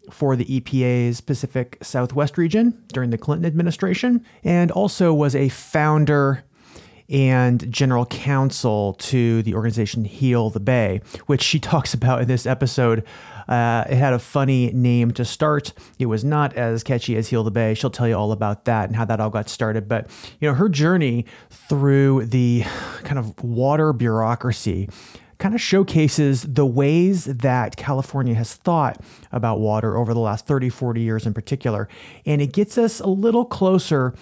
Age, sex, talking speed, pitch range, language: 30-49, male, 170 wpm, 115-145 Hz, English